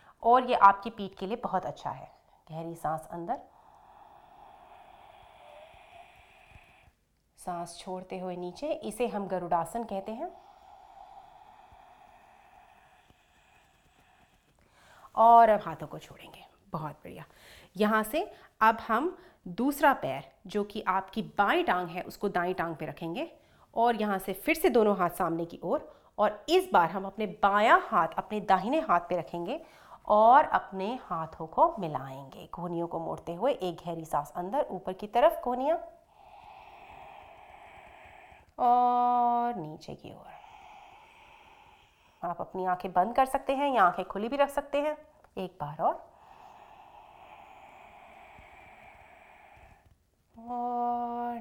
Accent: Indian